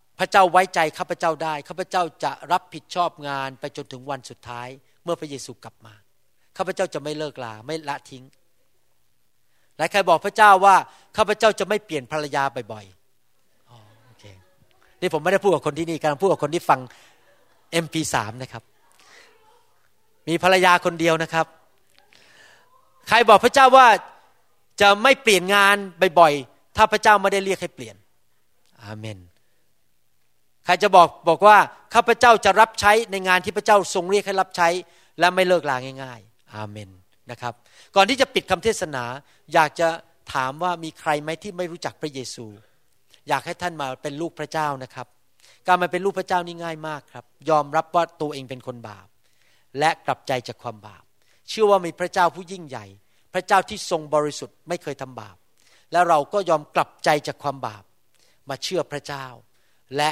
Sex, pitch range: male, 130-185 Hz